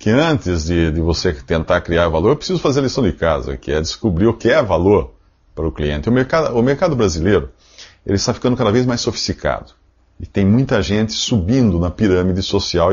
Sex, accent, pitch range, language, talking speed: male, Brazilian, 85-110 Hz, Portuguese, 200 wpm